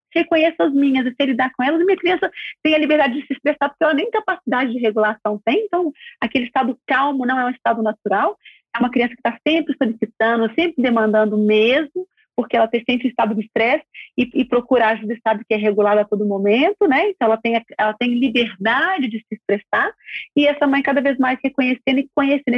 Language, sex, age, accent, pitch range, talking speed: Portuguese, female, 40-59, Brazilian, 250-325 Hz, 220 wpm